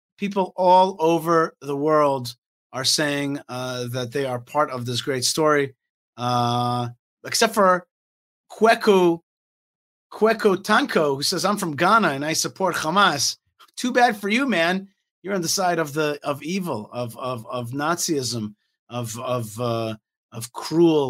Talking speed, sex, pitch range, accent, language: 150 wpm, male, 125-185 Hz, American, English